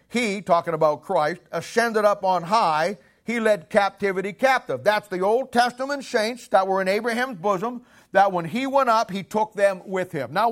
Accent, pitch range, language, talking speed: American, 155-225 Hz, English, 190 wpm